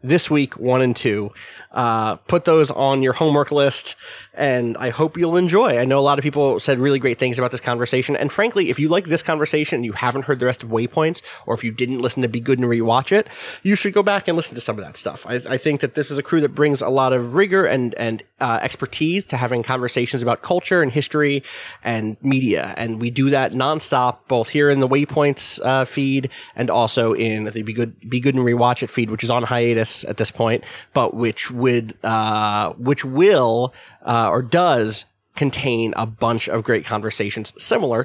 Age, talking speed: 20-39, 220 wpm